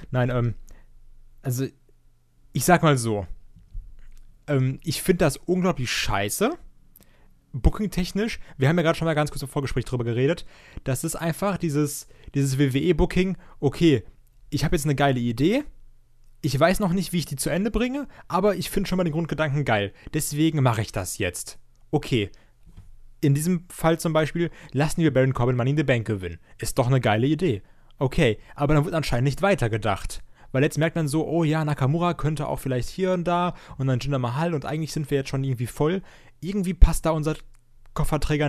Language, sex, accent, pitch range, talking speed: German, male, German, 120-160 Hz, 185 wpm